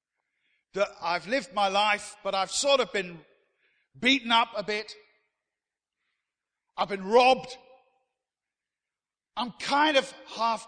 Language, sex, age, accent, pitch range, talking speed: English, male, 50-69, British, 180-240 Hz, 120 wpm